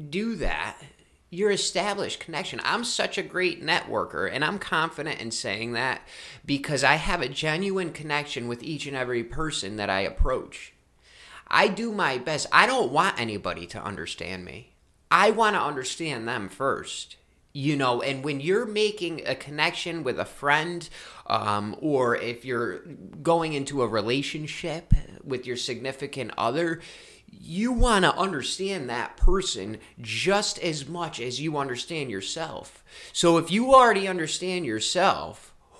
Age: 30-49